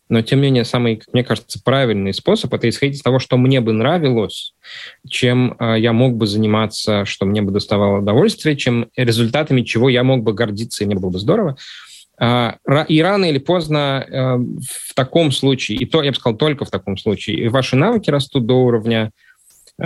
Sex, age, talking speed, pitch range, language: male, 20-39, 180 wpm, 110-130 Hz, Russian